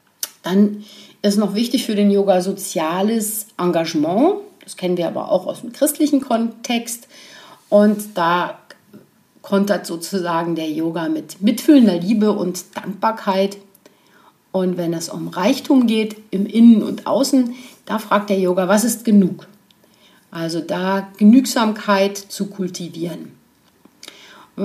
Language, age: German, 50-69